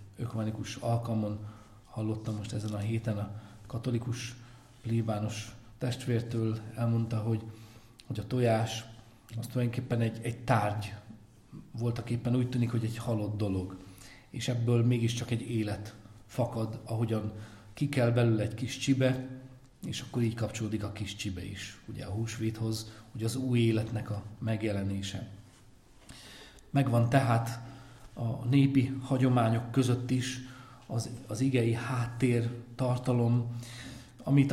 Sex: male